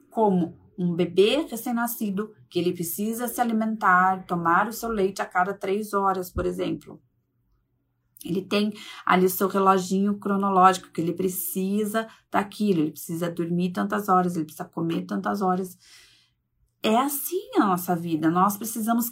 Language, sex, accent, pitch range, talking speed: Portuguese, female, Brazilian, 170-220 Hz, 150 wpm